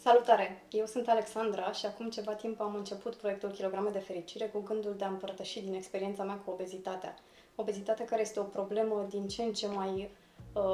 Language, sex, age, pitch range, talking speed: Romanian, female, 20-39, 190-225 Hz, 195 wpm